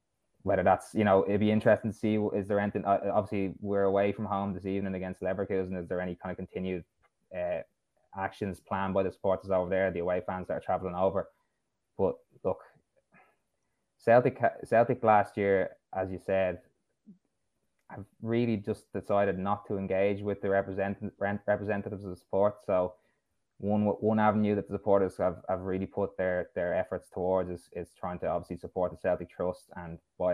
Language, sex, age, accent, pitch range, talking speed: English, male, 20-39, Irish, 90-105 Hz, 180 wpm